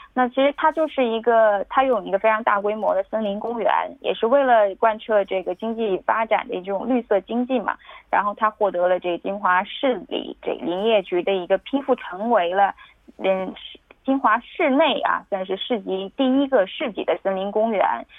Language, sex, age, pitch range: Korean, female, 20-39, 200-255 Hz